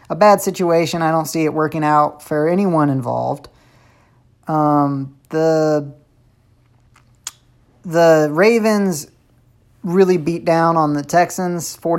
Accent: American